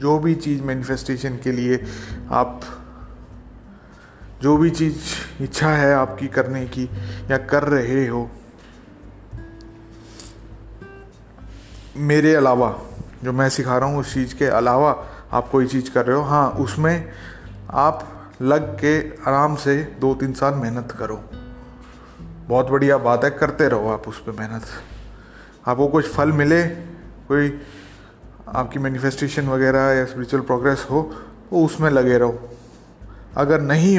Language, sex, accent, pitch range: Hindi, male, native, 110-145 Hz